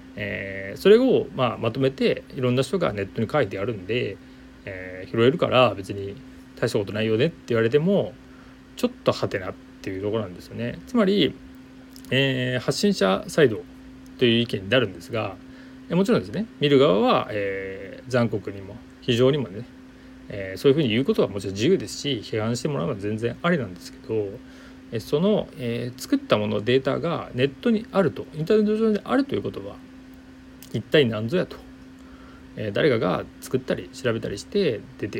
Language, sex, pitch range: Japanese, male, 100-140 Hz